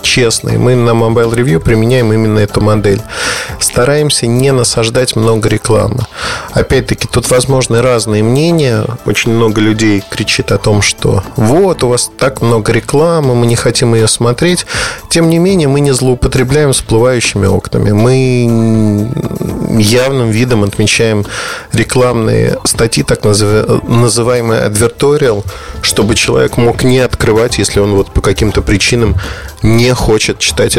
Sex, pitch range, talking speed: male, 105-130 Hz, 135 wpm